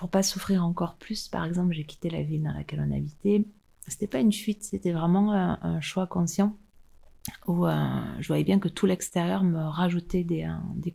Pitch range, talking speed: 155-185 Hz, 220 wpm